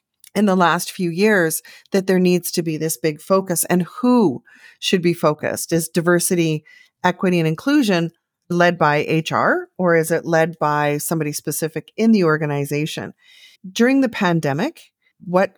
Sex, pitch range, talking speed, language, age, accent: female, 155-215 Hz, 155 wpm, English, 40-59, American